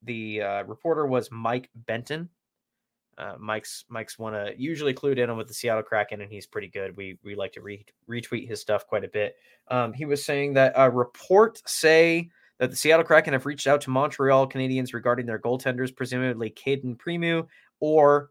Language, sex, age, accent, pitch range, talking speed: English, male, 20-39, American, 110-145 Hz, 185 wpm